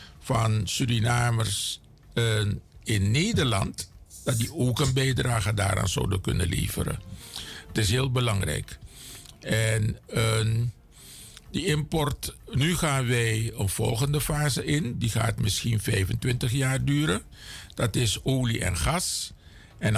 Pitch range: 100-135 Hz